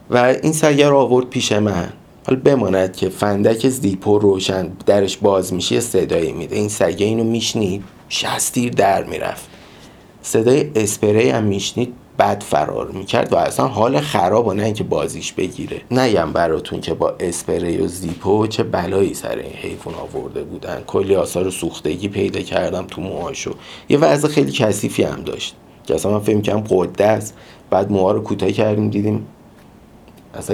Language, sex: Persian, male